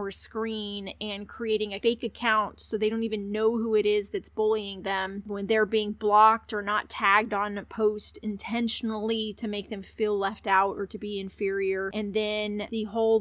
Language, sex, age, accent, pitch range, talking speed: English, female, 20-39, American, 200-225 Hz, 195 wpm